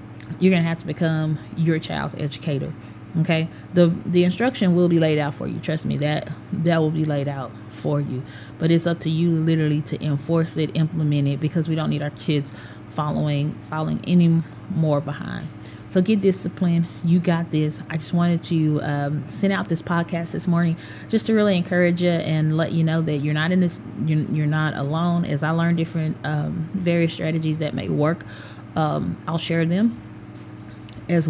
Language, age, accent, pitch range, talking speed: English, 20-39, American, 150-170 Hz, 195 wpm